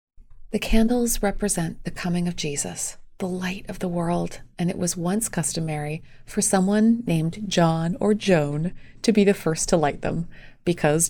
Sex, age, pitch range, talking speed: female, 30-49, 160-200 Hz, 170 wpm